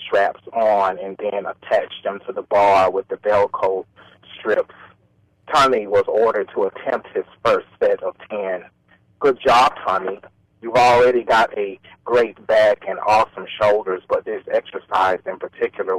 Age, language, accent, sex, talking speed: 30-49, English, American, male, 155 wpm